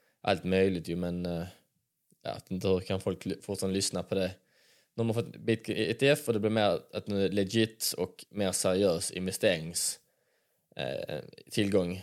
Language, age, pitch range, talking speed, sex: Swedish, 20-39, 95-115 Hz, 140 wpm, male